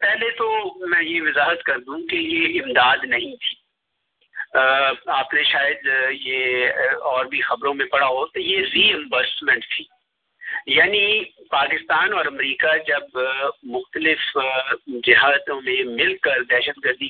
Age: 50-69